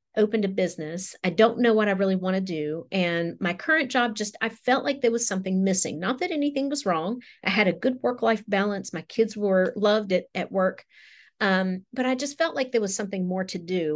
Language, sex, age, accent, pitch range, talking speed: English, female, 40-59, American, 175-225 Hz, 230 wpm